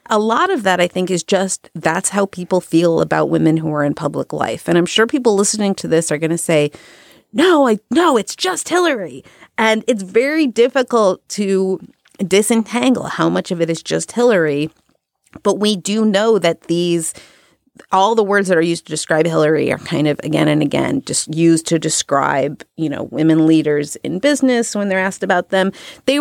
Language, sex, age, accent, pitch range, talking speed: English, female, 30-49, American, 160-220 Hz, 195 wpm